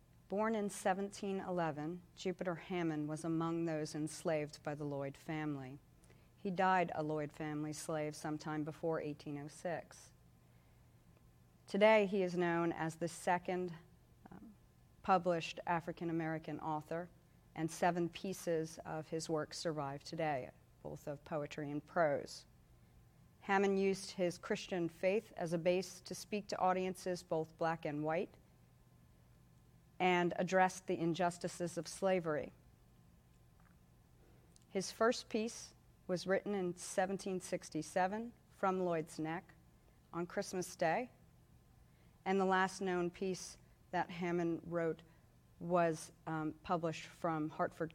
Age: 40-59